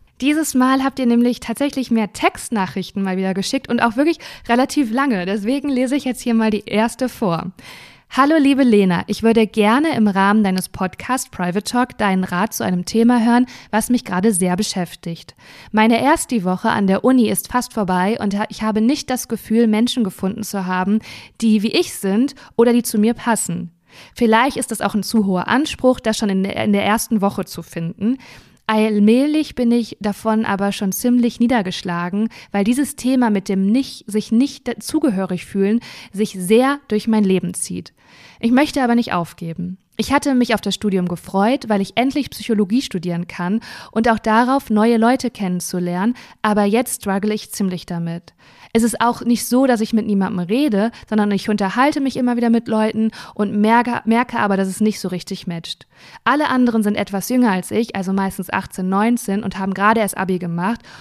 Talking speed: 190 wpm